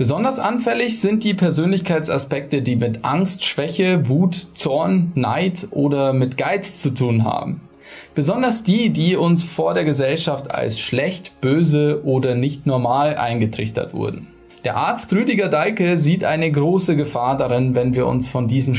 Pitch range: 130-185 Hz